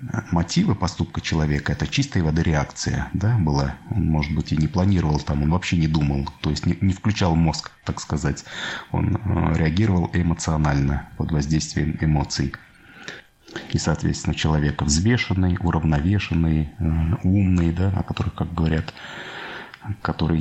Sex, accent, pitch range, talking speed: male, native, 75-90 Hz, 135 wpm